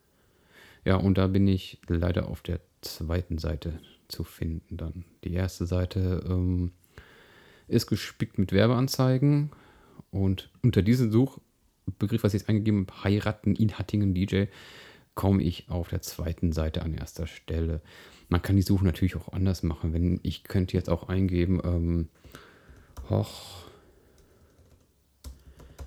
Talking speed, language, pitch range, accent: 135 wpm, German, 85-105 Hz, German